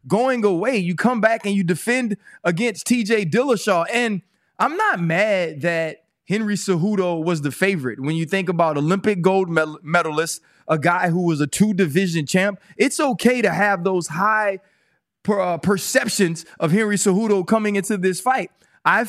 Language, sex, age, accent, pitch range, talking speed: English, male, 20-39, American, 170-215 Hz, 165 wpm